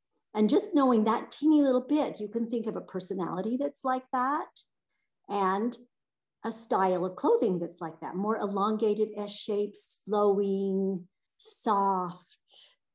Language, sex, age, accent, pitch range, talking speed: English, female, 50-69, American, 180-235 Hz, 135 wpm